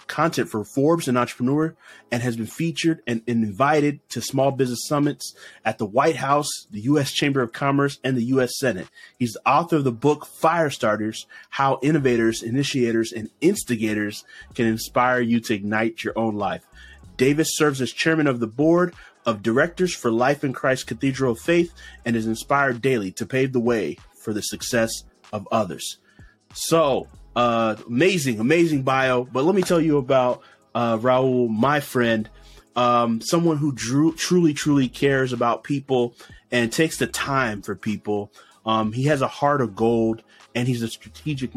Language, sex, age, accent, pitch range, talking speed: English, male, 30-49, American, 115-145 Hz, 170 wpm